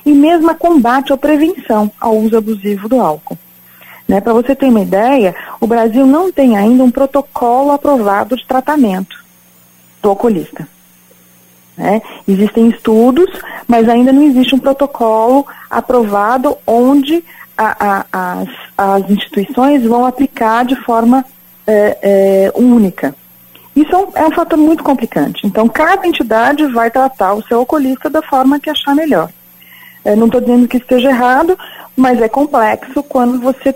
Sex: female